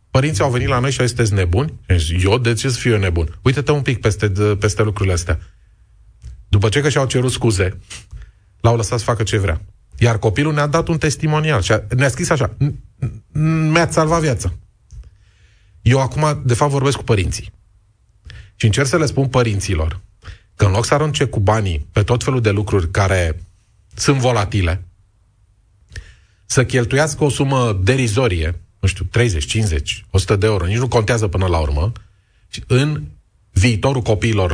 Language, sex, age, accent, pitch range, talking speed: Romanian, male, 30-49, native, 100-125 Hz, 170 wpm